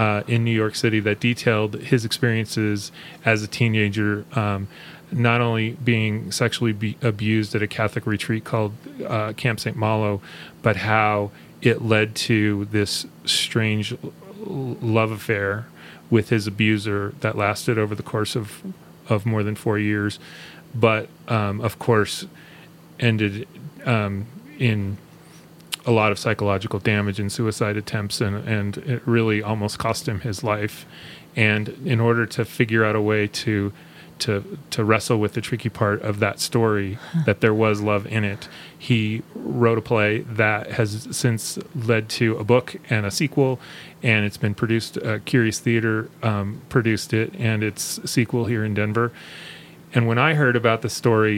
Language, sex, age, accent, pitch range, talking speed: English, male, 30-49, American, 105-120 Hz, 160 wpm